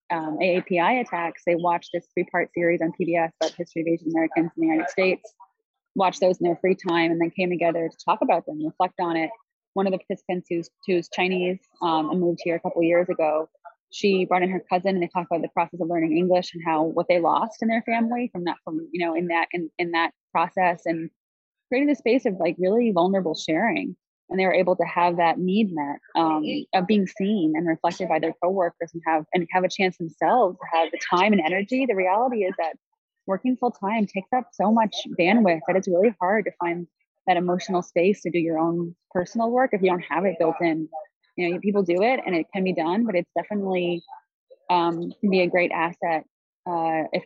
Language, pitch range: English, 170-195 Hz